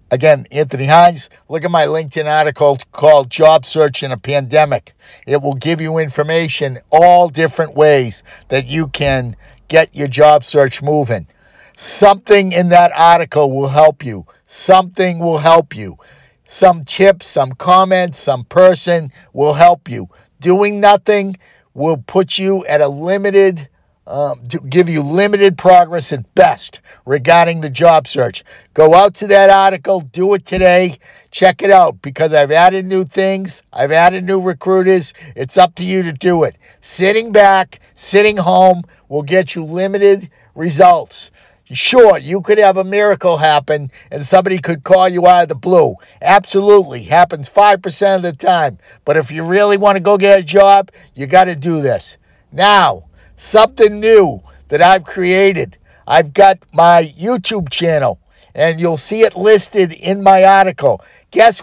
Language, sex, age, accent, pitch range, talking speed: English, male, 50-69, American, 150-195 Hz, 160 wpm